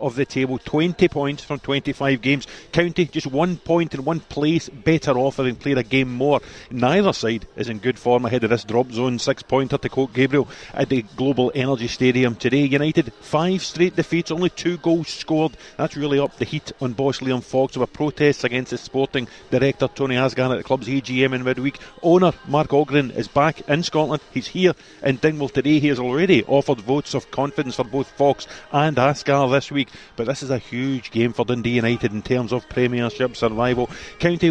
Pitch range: 130-150 Hz